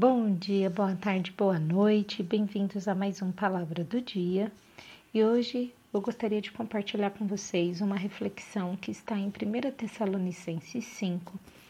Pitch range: 185-220 Hz